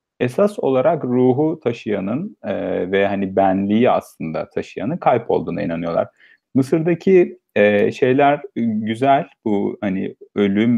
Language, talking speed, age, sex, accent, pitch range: Turkish, 110 wpm, 40-59, male, native, 105-145 Hz